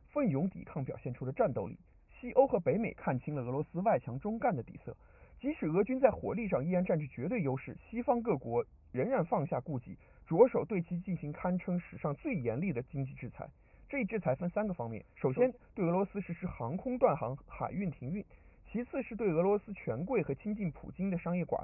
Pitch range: 145-210 Hz